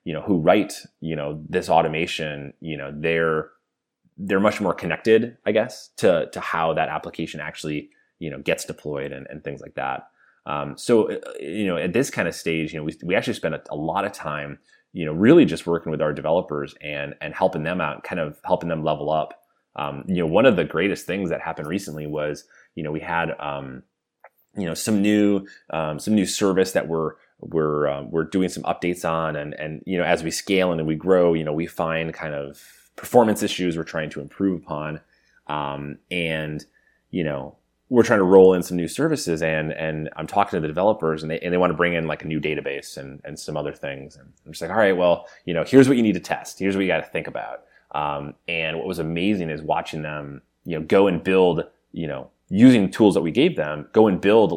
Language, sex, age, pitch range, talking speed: English, male, 30-49, 75-90 Hz, 230 wpm